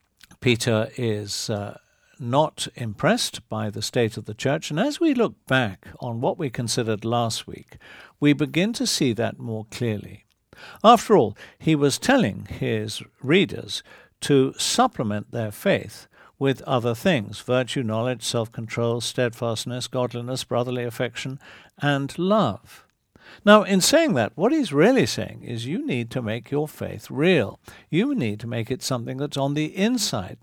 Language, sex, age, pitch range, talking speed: English, male, 50-69, 115-155 Hz, 155 wpm